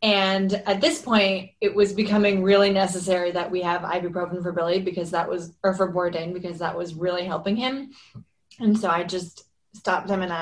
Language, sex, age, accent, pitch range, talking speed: English, female, 20-39, American, 180-205 Hz, 195 wpm